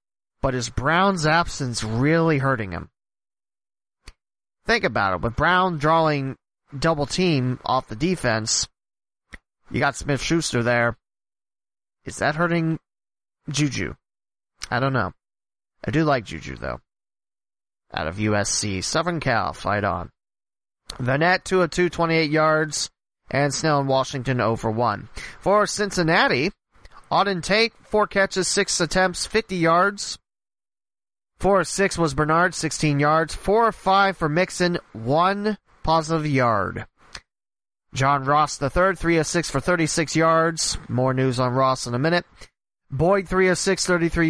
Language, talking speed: English, 125 wpm